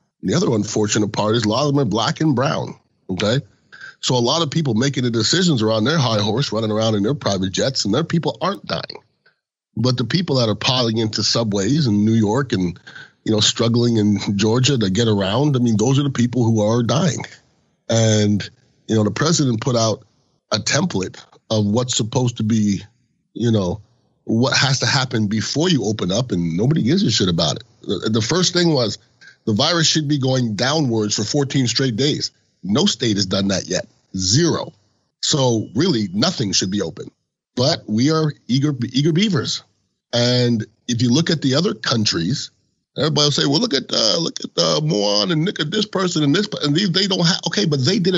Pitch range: 110-150 Hz